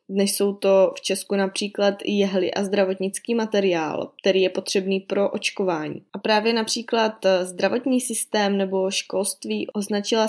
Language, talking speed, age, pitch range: Czech, 135 wpm, 20-39, 185-210 Hz